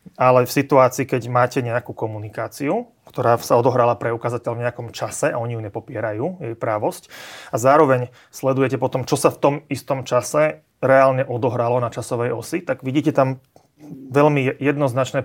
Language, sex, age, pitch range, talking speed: Slovak, male, 30-49, 120-140 Hz, 155 wpm